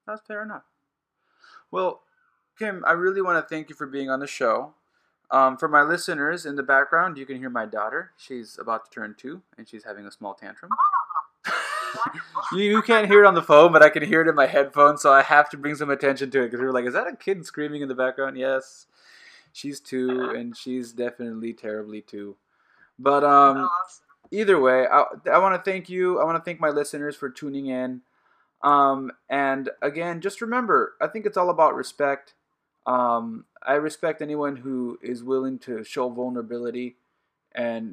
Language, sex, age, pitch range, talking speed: English, male, 20-39, 125-155 Hz, 195 wpm